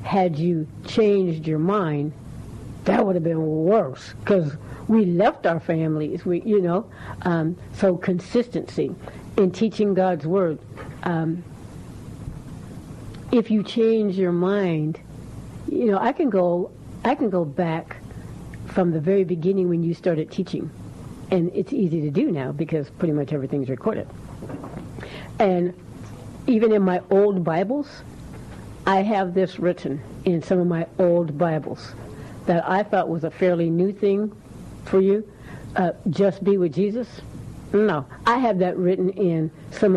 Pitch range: 160-195 Hz